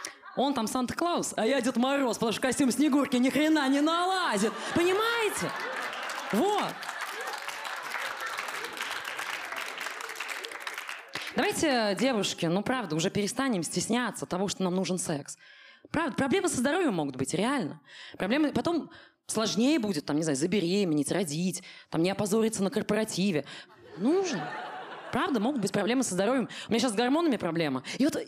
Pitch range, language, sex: 190-295 Hz, Russian, female